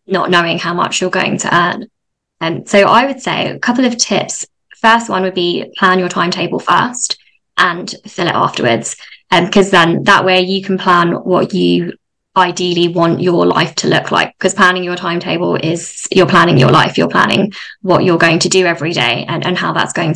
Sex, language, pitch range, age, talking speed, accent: female, English, 180-205 Hz, 20-39, 205 wpm, British